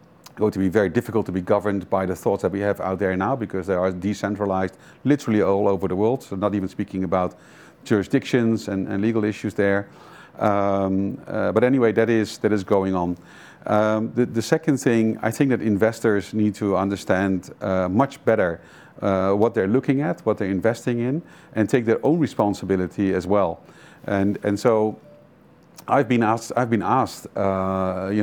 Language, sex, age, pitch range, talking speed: English, male, 50-69, 95-115 Hz, 190 wpm